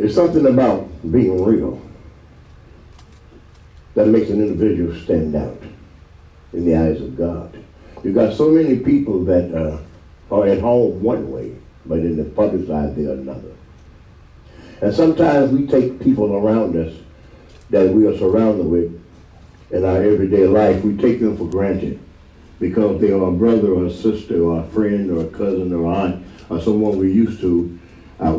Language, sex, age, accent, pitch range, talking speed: English, male, 60-79, American, 80-105 Hz, 165 wpm